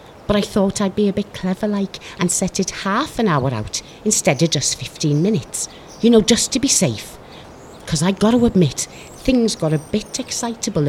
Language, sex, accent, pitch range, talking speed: English, female, British, 150-235 Hz, 205 wpm